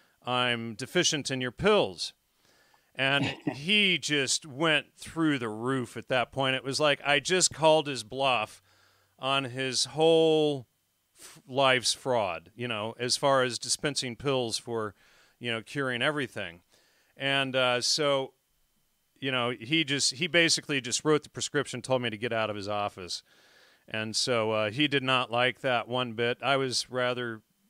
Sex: male